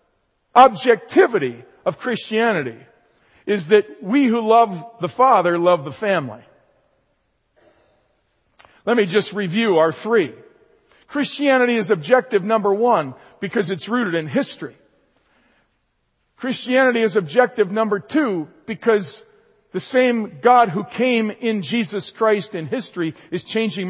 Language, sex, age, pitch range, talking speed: English, male, 50-69, 170-235 Hz, 120 wpm